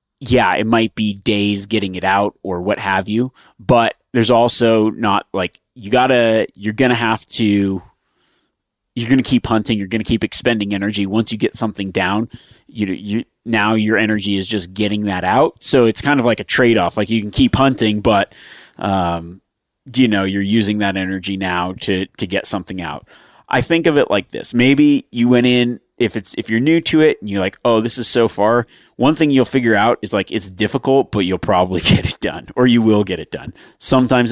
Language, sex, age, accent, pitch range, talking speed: English, male, 30-49, American, 95-115 Hz, 215 wpm